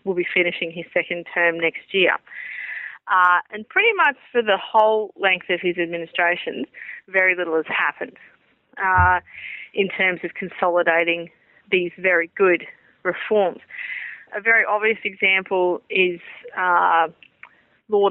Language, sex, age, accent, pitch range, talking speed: English, female, 30-49, Australian, 175-215 Hz, 130 wpm